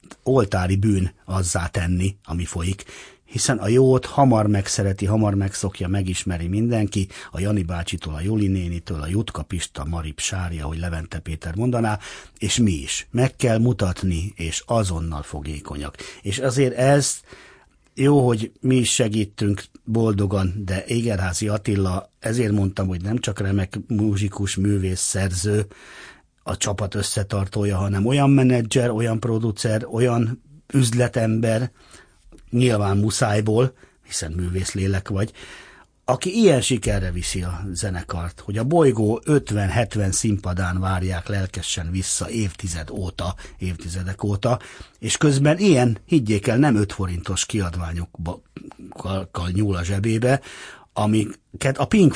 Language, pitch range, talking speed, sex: Hungarian, 95-115 Hz, 125 wpm, male